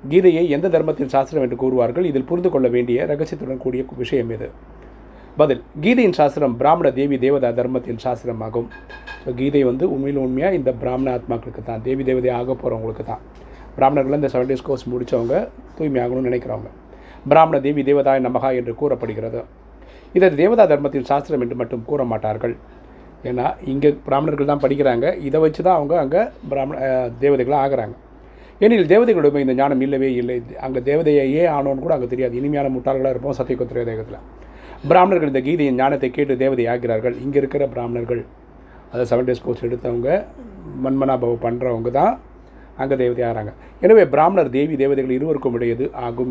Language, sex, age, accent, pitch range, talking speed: Tamil, male, 30-49, native, 120-140 Hz, 145 wpm